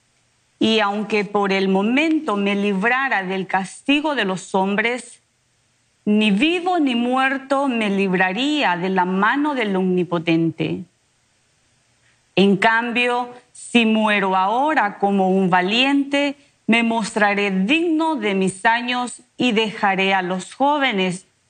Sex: female